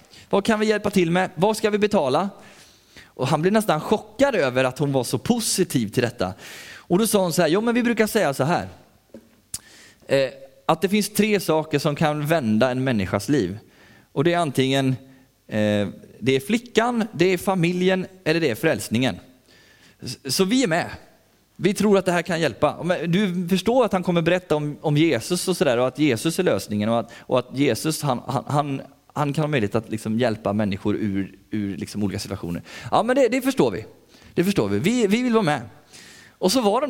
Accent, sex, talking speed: native, male, 210 wpm